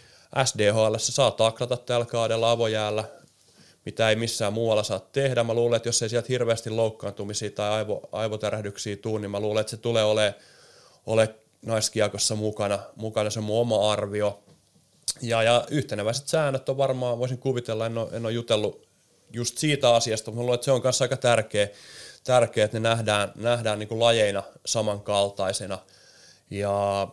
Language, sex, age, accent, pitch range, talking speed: Finnish, male, 30-49, native, 105-125 Hz, 165 wpm